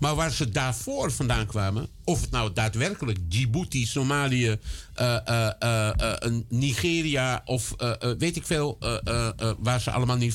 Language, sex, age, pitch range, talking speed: Dutch, male, 50-69, 110-145 Hz, 170 wpm